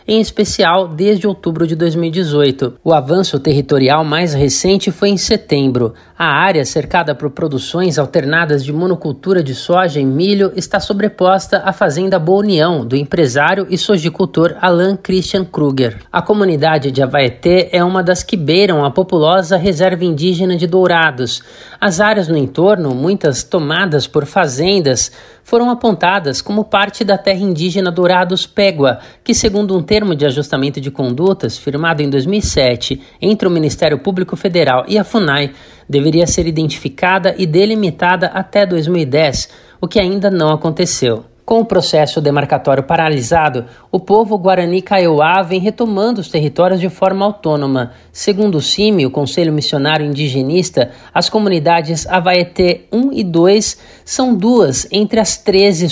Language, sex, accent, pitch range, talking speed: Portuguese, male, Brazilian, 150-195 Hz, 150 wpm